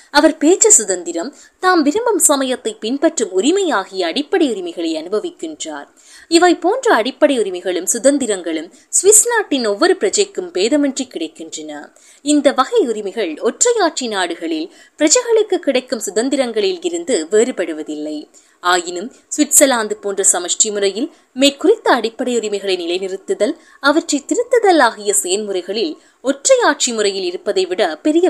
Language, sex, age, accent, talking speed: Tamil, female, 20-39, native, 105 wpm